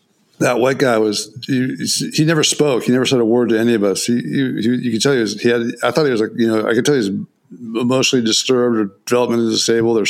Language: English